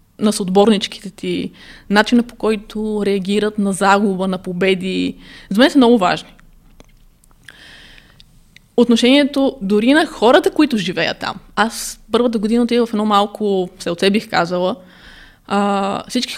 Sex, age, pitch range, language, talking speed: female, 20-39, 195-240 Hz, Bulgarian, 125 wpm